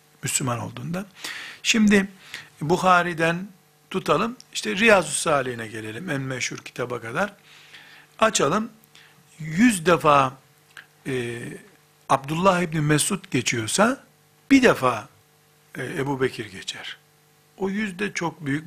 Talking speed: 100 wpm